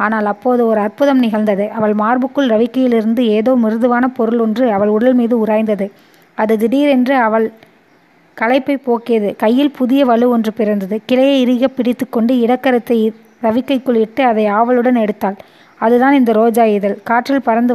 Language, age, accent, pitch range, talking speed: Tamil, 20-39, native, 220-250 Hz, 140 wpm